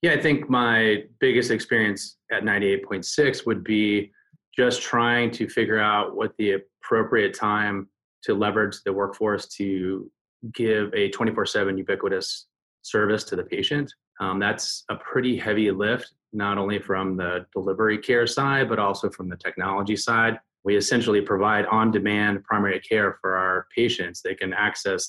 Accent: American